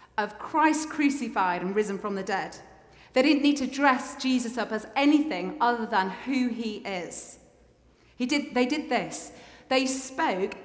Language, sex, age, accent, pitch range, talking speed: English, female, 30-49, British, 215-265 Hz, 165 wpm